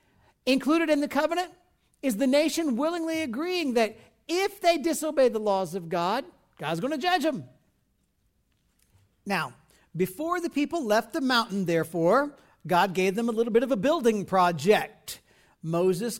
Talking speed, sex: 150 wpm, male